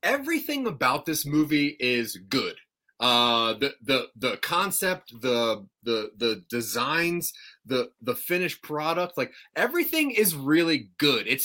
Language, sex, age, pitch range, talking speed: English, male, 30-49, 120-170 Hz, 130 wpm